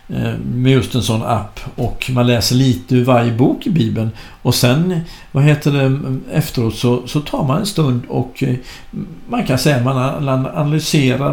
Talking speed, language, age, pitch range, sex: 170 wpm, Swedish, 60-79, 120-170 Hz, male